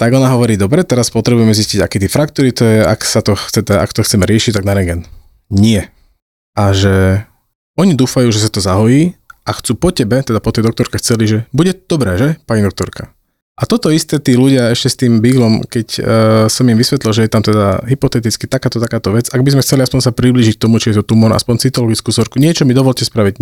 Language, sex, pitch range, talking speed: Slovak, male, 110-130 Hz, 225 wpm